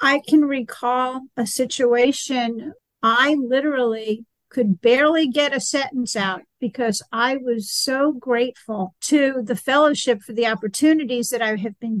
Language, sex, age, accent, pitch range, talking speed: English, female, 50-69, American, 230-280 Hz, 140 wpm